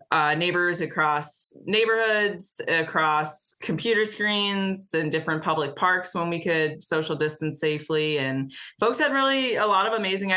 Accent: American